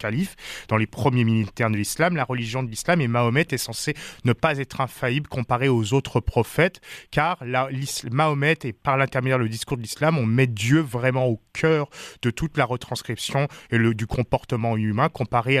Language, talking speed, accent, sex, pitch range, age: English, 190 wpm, French, male, 115-145 Hz, 20-39